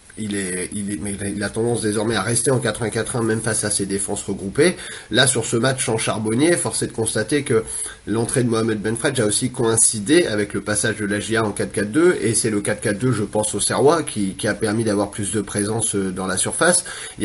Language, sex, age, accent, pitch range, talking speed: French, male, 30-49, French, 105-130 Hz, 225 wpm